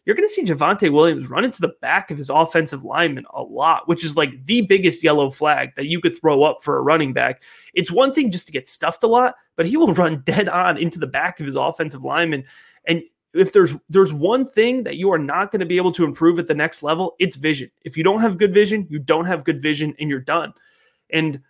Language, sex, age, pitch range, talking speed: English, male, 30-49, 155-215 Hz, 255 wpm